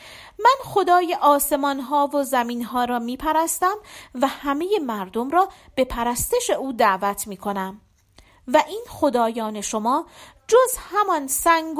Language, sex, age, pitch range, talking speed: Persian, female, 40-59, 235-335 Hz, 130 wpm